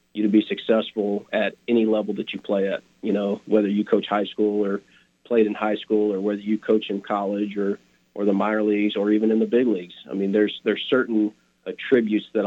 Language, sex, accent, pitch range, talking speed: English, male, American, 100-110 Hz, 225 wpm